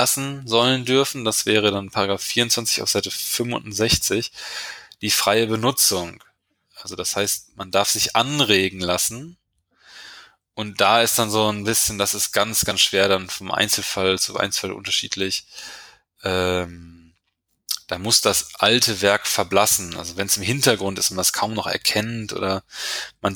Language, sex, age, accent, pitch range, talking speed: German, male, 20-39, German, 95-110 Hz, 155 wpm